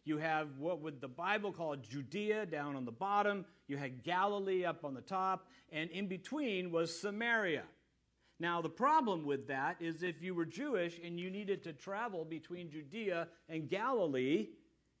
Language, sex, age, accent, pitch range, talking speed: English, male, 50-69, American, 155-205 Hz, 170 wpm